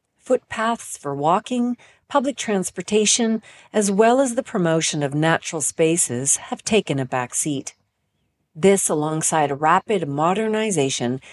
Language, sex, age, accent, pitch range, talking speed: English, female, 40-59, American, 145-210 Hz, 115 wpm